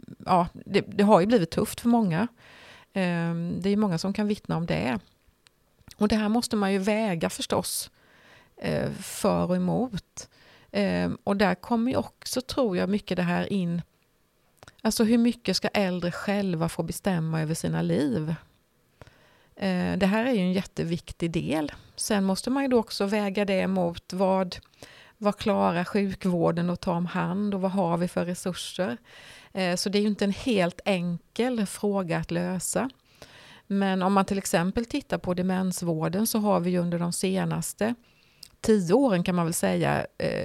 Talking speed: 170 wpm